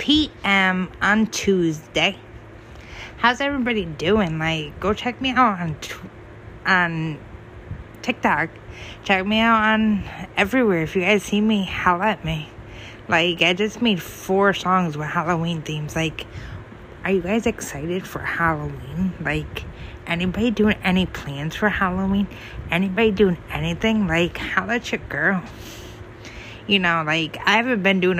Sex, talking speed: female, 140 wpm